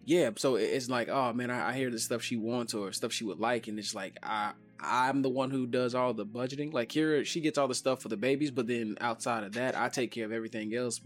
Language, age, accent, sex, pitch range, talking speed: English, 20-39, American, male, 110-125 Hz, 270 wpm